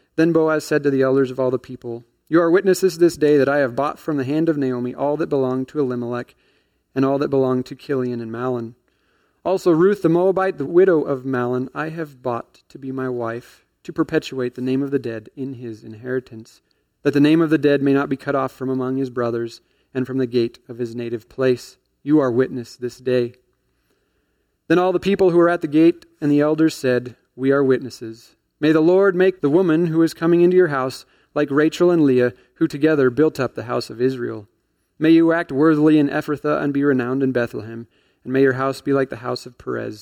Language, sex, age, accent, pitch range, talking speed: English, male, 30-49, American, 125-160 Hz, 225 wpm